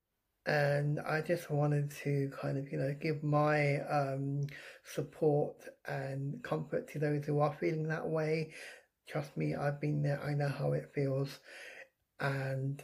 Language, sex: English, male